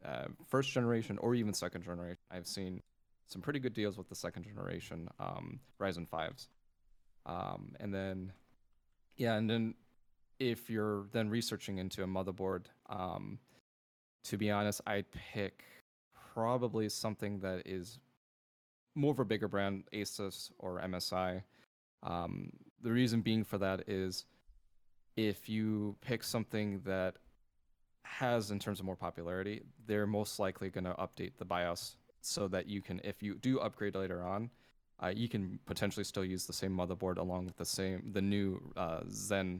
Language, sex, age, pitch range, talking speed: English, male, 20-39, 90-110 Hz, 150 wpm